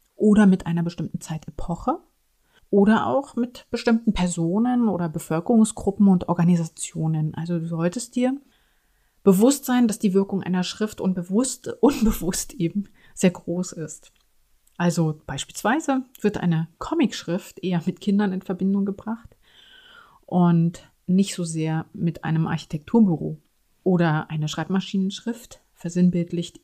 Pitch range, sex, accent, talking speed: 170-210 Hz, female, German, 120 wpm